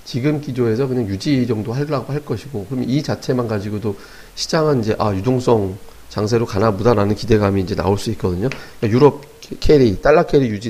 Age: 40-59